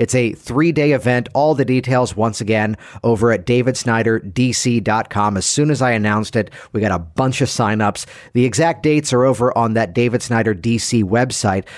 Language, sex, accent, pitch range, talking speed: English, male, American, 110-135 Hz, 180 wpm